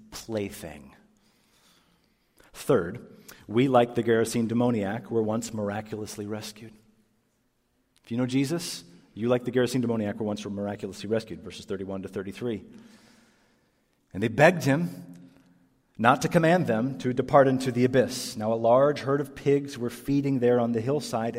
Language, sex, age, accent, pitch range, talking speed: English, male, 40-59, American, 100-135 Hz, 150 wpm